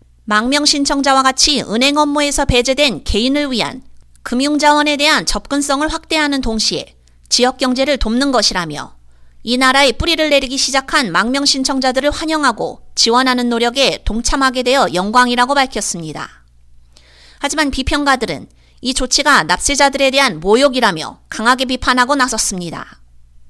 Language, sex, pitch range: Korean, female, 210-295 Hz